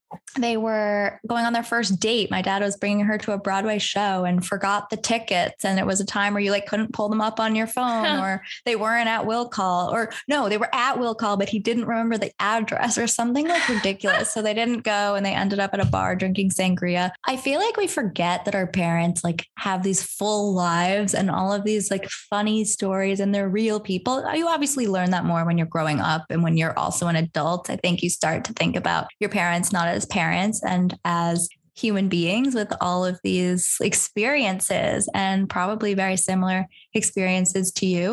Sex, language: female, English